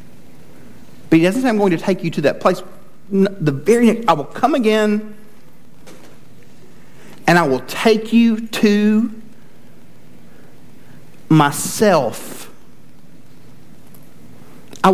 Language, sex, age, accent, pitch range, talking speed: English, male, 50-69, American, 170-215 Hz, 105 wpm